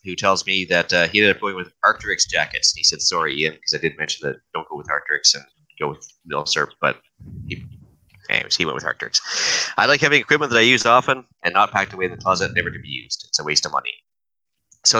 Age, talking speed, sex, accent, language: 30-49, 250 wpm, male, American, English